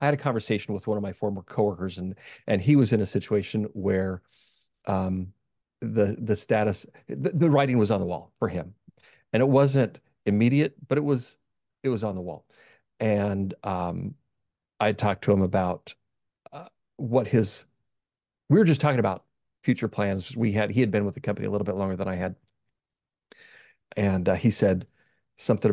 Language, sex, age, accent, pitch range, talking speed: English, male, 40-59, American, 100-130 Hz, 185 wpm